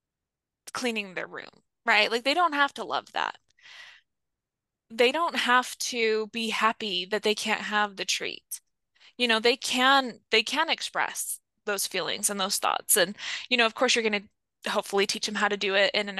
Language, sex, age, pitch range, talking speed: English, female, 20-39, 205-245 Hz, 195 wpm